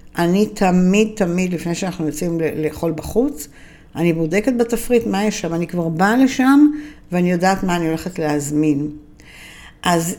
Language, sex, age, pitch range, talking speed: Hebrew, female, 60-79, 165-210 Hz, 145 wpm